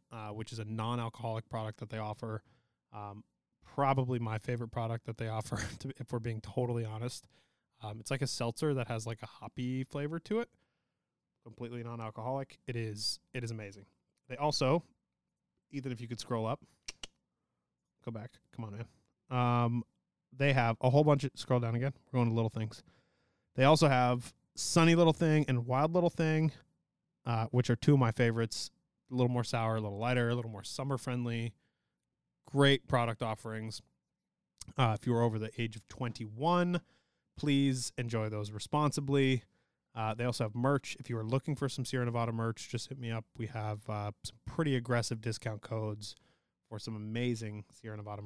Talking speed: 185 wpm